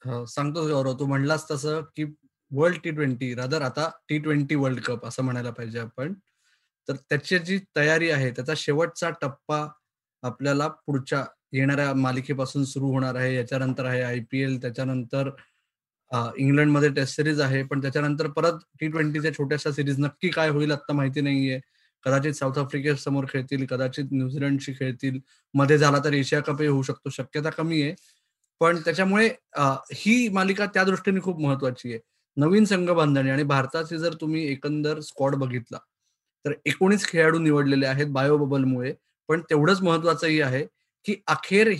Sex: male